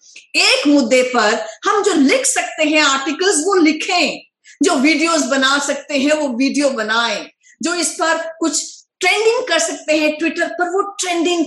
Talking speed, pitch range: 160 wpm, 245-360 Hz